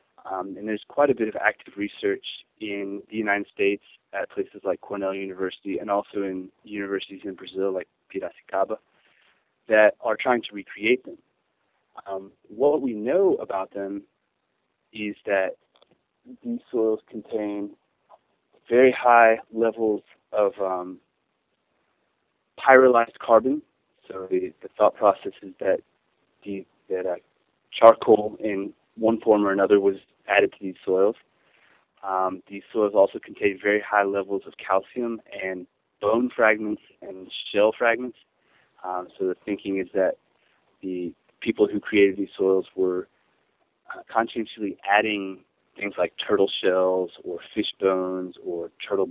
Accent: American